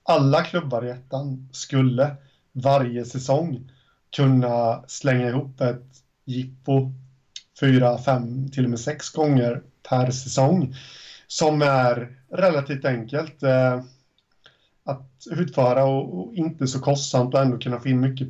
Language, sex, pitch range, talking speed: Swedish, male, 130-145 Hz, 130 wpm